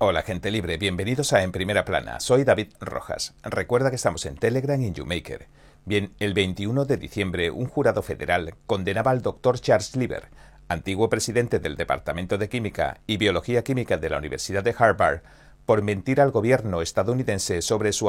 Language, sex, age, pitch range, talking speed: Spanish, male, 40-59, 95-125 Hz, 175 wpm